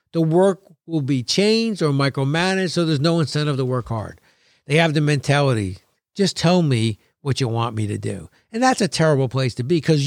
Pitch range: 145-220 Hz